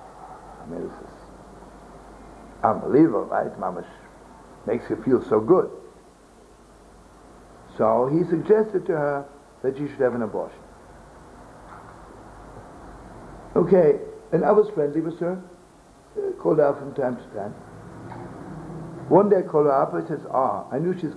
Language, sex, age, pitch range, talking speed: English, male, 60-79, 130-170 Hz, 145 wpm